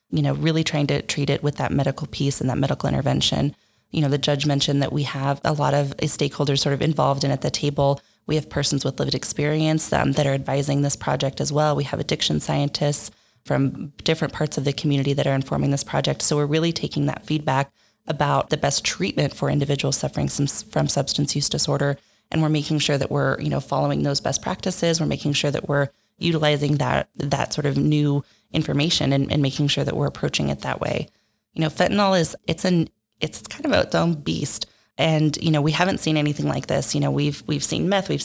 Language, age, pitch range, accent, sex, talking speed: English, 20-39, 140-155 Hz, American, female, 225 wpm